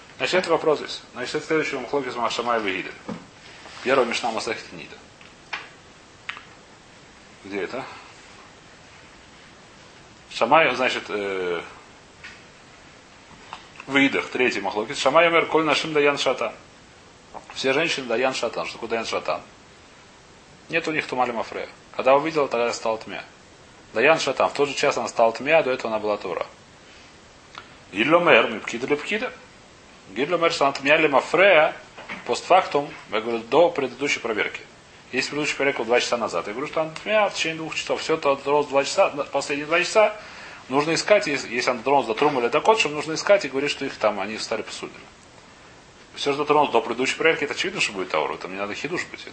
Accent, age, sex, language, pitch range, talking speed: native, 30-49, male, Russian, 115-155 Hz, 160 wpm